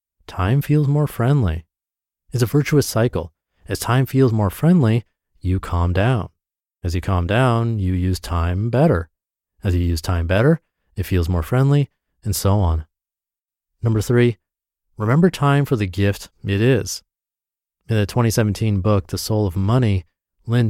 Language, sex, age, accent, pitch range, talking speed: English, male, 30-49, American, 95-120 Hz, 155 wpm